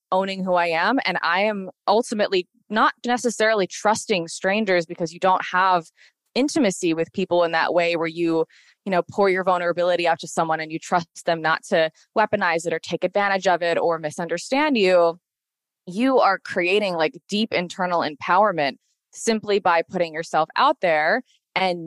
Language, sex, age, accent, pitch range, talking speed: English, female, 20-39, American, 170-215 Hz, 170 wpm